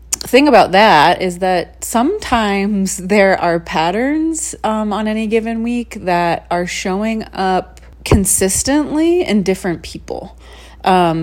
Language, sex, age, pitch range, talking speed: English, female, 30-49, 150-195 Hz, 125 wpm